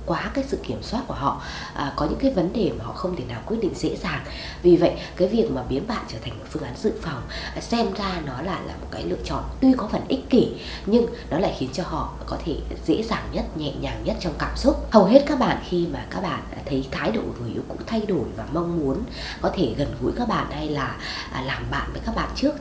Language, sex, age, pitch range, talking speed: Vietnamese, female, 20-39, 140-225 Hz, 265 wpm